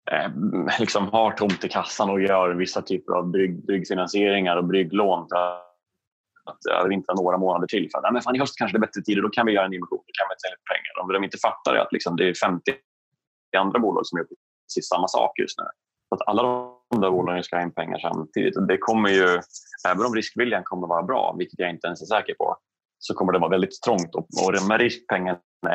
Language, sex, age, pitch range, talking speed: Swedish, male, 30-49, 90-105 Hz, 230 wpm